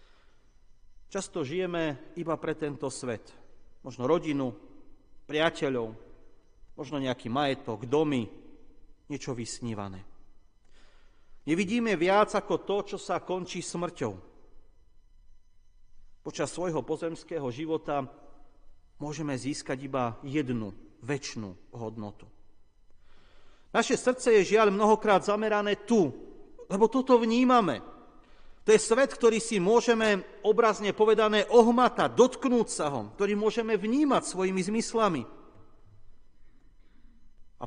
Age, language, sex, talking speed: 40-59, Slovak, male, 95 wpm